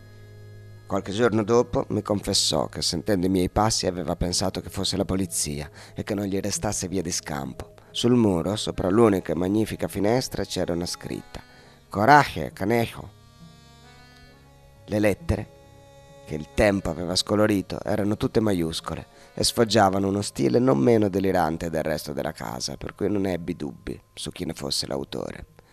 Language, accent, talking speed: Italian, native, 155 wpm